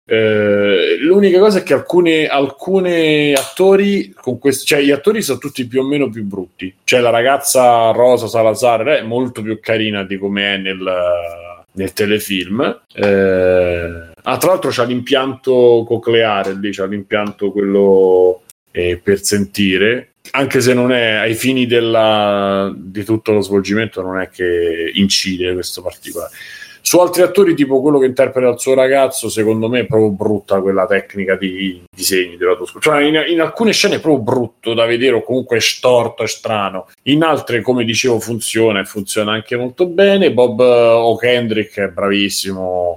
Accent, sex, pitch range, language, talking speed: native, male, 100-140 Hz, Italian, 160 wpm